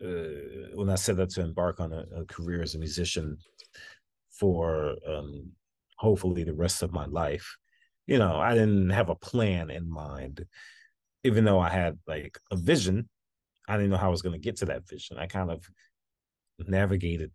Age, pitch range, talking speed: 30-49, 85-100 Hz, 185 wpm